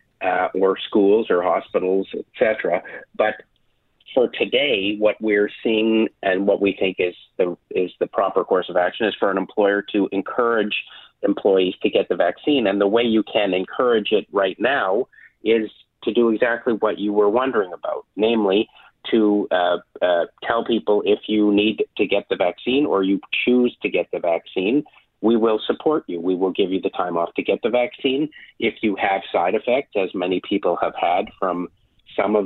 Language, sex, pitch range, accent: English, male, 95-115 Hz, American